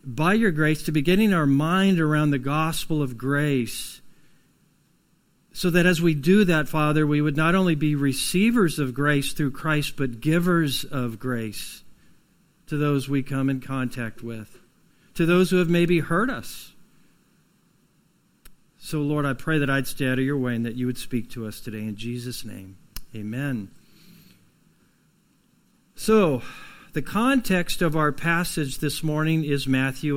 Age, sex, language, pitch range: 50-69, male, English, 140-175 Hz